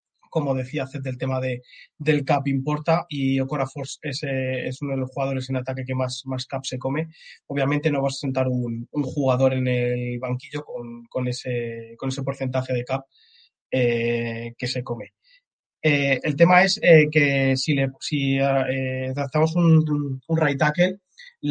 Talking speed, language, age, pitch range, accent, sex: 175 wpm, Spanish, 20-39, 135-155 Hz, Spanish, male